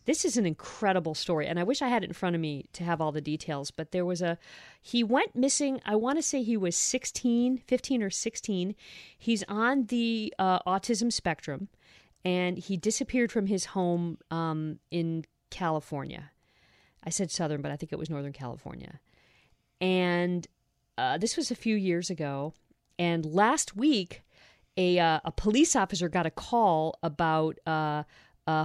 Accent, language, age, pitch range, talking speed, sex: American, English, 40-59, 155-200 Hz, 170 wpm, female